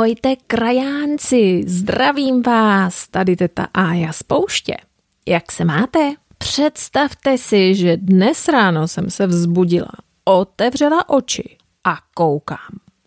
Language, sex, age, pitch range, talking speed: Czech, female, 30-49, 175-265 Hz, 105 wpm